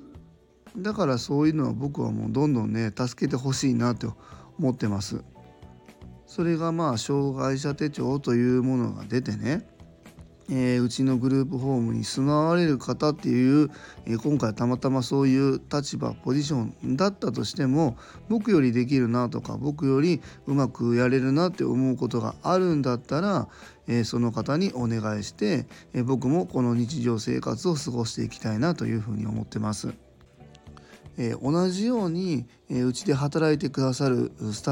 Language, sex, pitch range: Japanese, male, 115-150 Hz